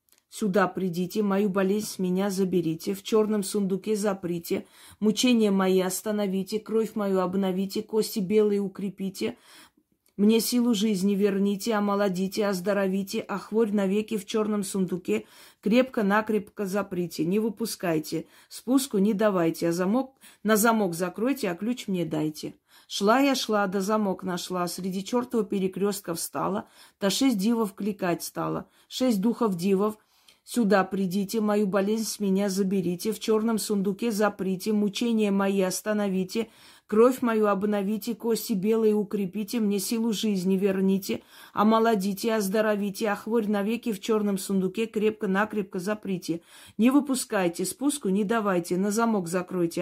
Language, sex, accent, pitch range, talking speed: Russian, female, native, 185-220 Hz, 130 wpm